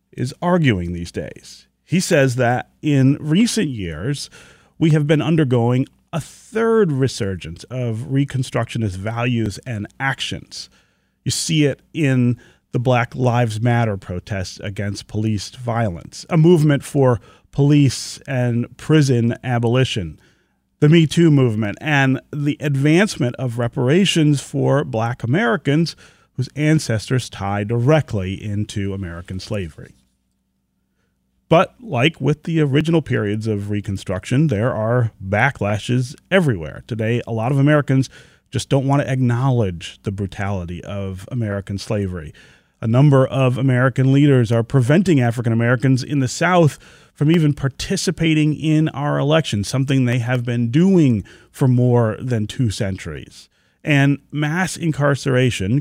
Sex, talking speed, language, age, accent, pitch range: male, 125 wpm, English, 40-59, American, 110-145 Hz